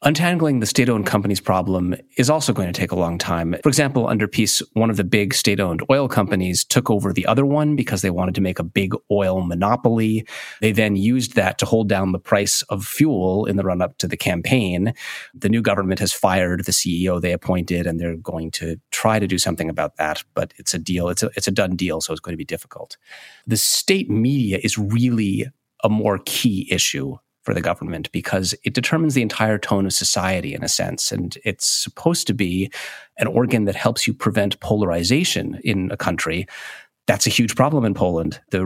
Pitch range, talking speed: 90-115 Hz, 210 wpm